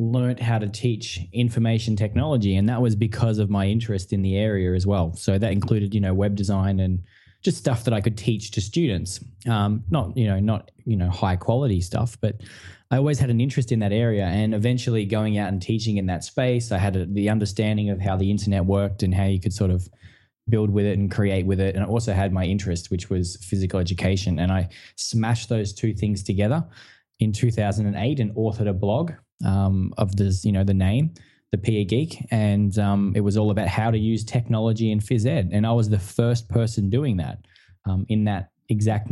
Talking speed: 220 wpm